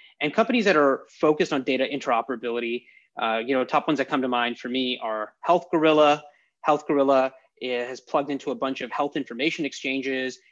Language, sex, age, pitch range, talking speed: English, male, 30-49, 130-155 Hz, 195 wpm